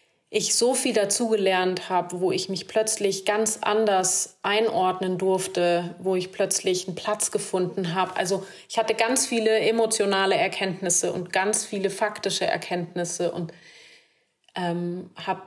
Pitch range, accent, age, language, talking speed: 185-215 Hz, German, 30-49, German, 135 wpm